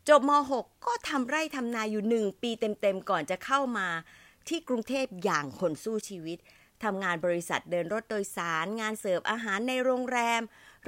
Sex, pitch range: female, 175-245 Hz